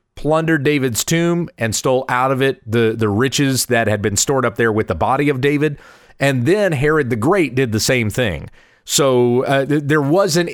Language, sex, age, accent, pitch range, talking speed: English, male, 30-49, American, 125-170 Hz, 200 wpm